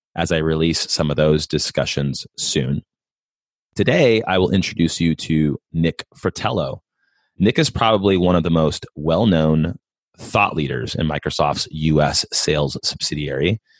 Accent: American